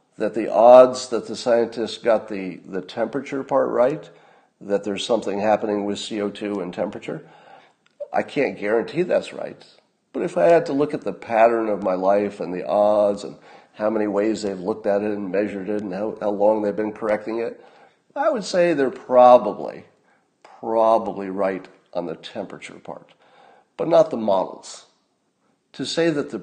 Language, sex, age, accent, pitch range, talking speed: English, male, 50-69, American, 100-125 Hz, 175 wpm